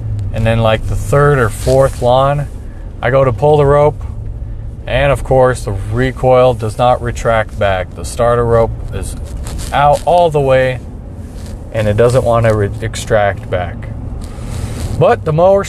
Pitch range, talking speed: 100-125 Hz, 160 wpm